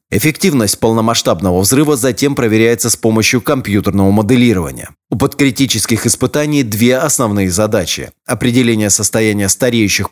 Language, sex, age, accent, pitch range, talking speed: Russian, male, 30-49, native, 105-130 Hz, 105 wpm